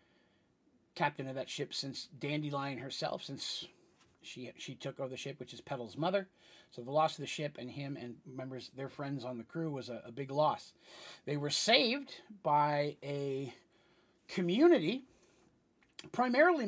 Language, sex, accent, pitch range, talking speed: English, male, American, 130-160 Hz, 160 wpm